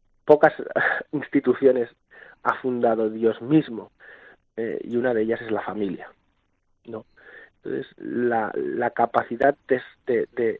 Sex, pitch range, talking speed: male, 115-130 Hz, 120 wpm